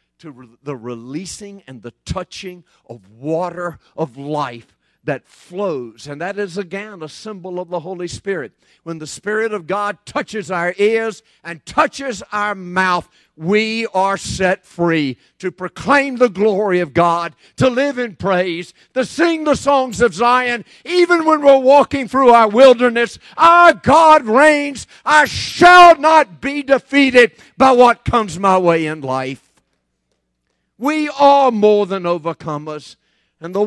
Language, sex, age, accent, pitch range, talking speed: English, male, 50-69, American, 155-260 Hz, 150 wpm